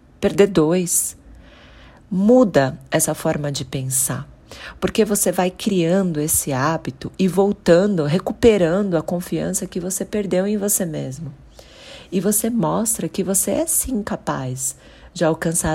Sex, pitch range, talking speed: female, 150-195 Hz, 130 wpm